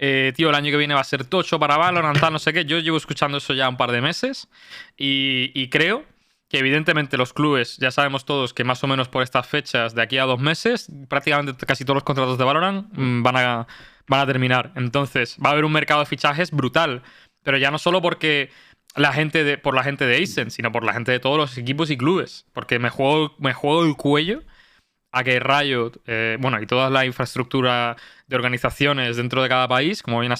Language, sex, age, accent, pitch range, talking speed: Spanish, male, 20-39, Spanish, 130-155 Hz, 230 wpm